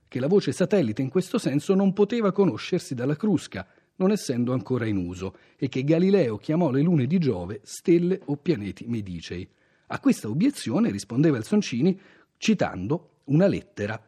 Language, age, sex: Italian, 40-59, male